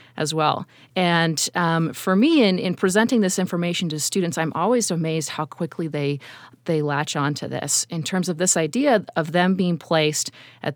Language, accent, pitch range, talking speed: English, American, 155-195 Hz, 185 wpm